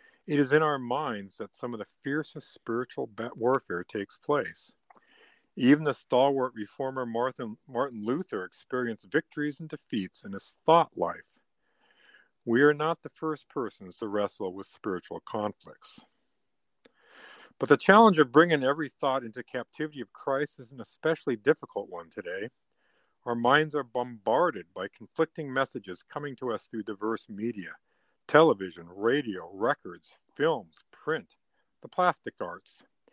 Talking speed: 140 wpm